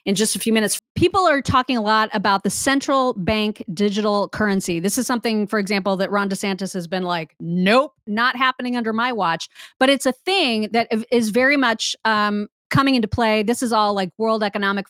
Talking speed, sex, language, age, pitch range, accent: 205 wpm, female, English, 30-49, 210-265 Hz, American